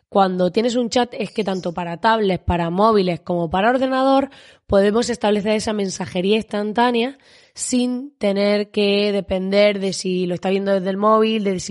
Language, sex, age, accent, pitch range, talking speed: Spanish, female, 20-39, Spanish, 185-235 Hz, 170 wpm